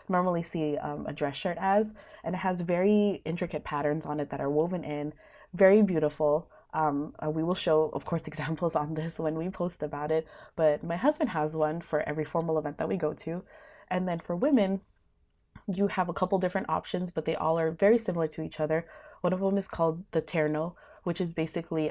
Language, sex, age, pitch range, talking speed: English, female, 20-39, 155-190 Hz, 215 wpm